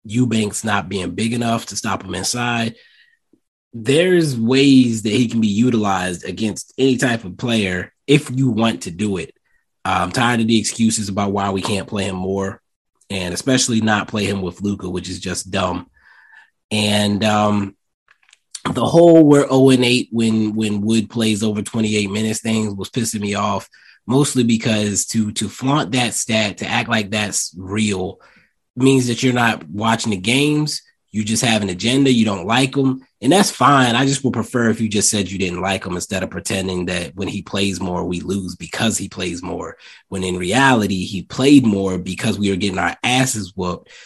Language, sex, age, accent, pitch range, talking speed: English, male, 20-39, American, 95-120 Hz, 190 wpm